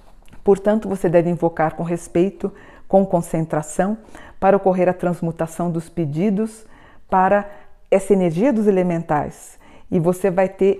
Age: 50-69